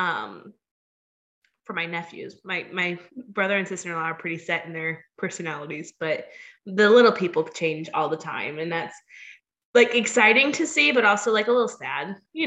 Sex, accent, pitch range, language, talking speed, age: female, American, 175-235 Hz, English, 175 wpm, 20-39